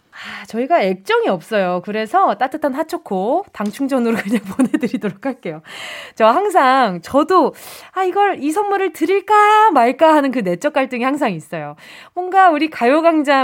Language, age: Korean, 20-39